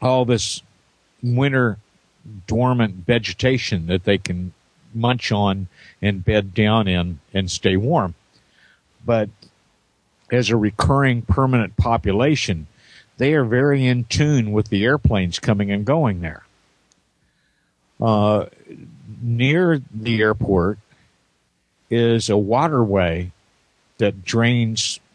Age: 50-69